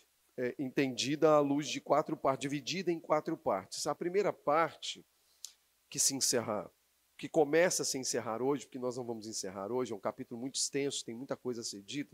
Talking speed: 185 wpm